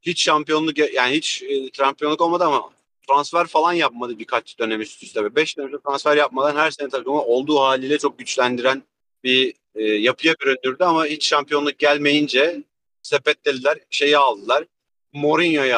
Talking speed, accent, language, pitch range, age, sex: 140 wpm, native, Turkish, 130-155 Hz, 40-59, male